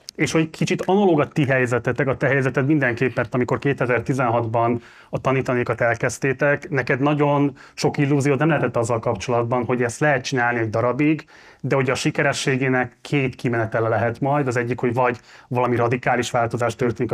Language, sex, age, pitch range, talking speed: Hungarian, male, 30-49, 120-140 Hz, 160 wpm